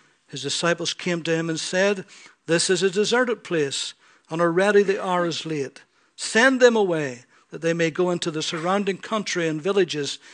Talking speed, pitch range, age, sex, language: 180 wpm, 160-200 Hz, 60-79, male, English